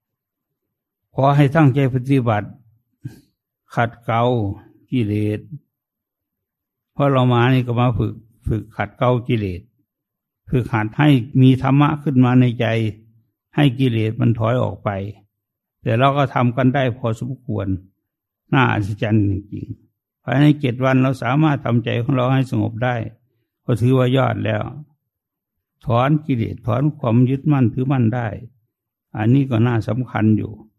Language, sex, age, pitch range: English, male, 60-79, 110-130 Hz